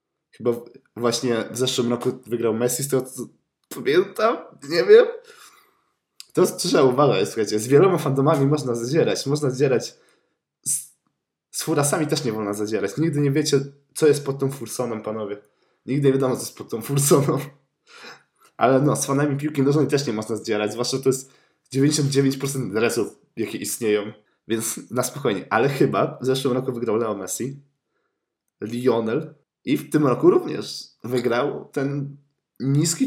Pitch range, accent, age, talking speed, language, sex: 115-150 Hz, native, 20-39, 155 wpm, Polish, male